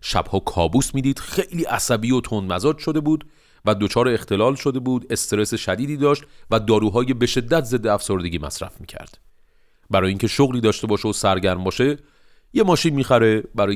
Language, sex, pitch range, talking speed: Persian, male, 95-140 Hz, 170 wpm